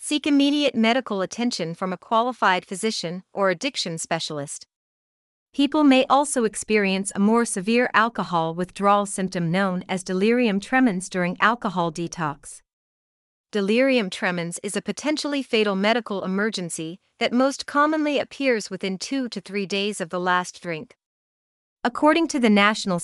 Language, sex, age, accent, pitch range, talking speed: English, female, 40-59, American, 180-245 Hz, 140 wpm